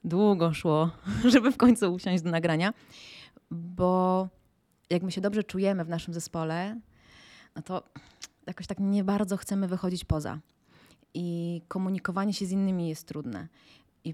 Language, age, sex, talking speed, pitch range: Polish, 20-39, female, 145 wpm, 170-195 Hz